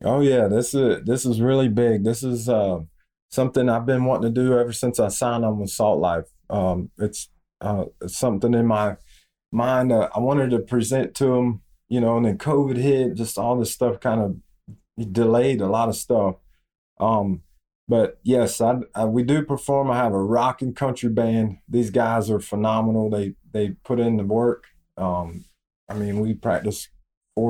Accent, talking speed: American, 190 wpm